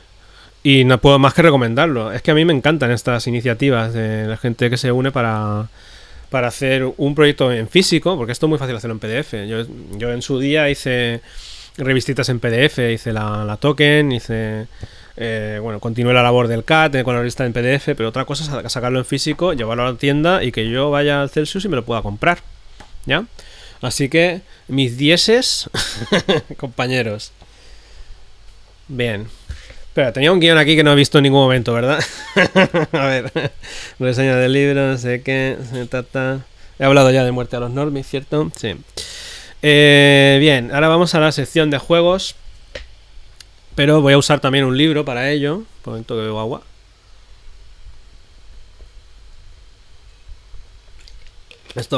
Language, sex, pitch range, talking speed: English, male, 105-140 Hz, 165 wpm